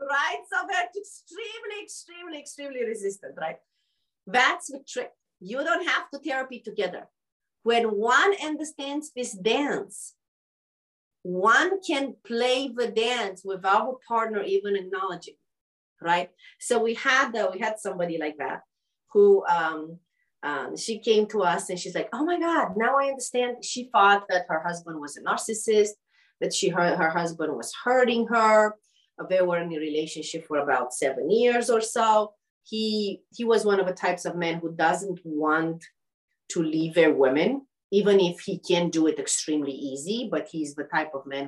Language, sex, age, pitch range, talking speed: English, female, 40-59, 175-270 Hz, 165 wpm